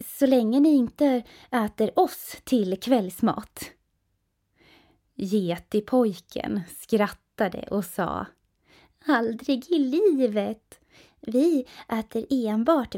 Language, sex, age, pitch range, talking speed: Swedish, female, 20-39, 190-270 Hz, 90 wpm